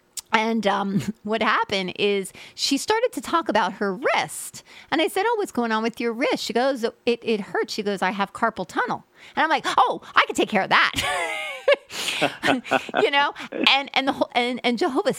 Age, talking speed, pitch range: 30-49, 205 wpm, 210-285 Hz